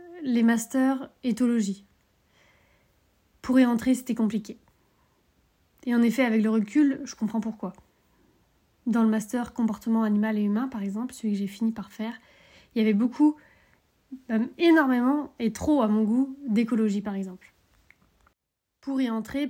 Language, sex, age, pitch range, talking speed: French, female, 30-49, 220-260 Hz, 150 wpm